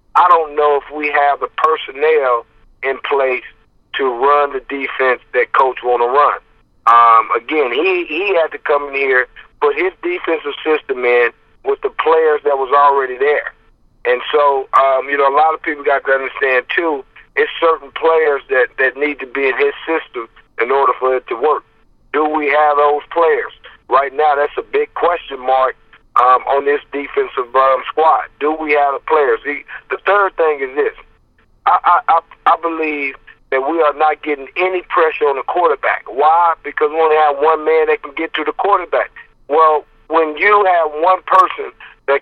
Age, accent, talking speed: 50-69, American, 190 wpm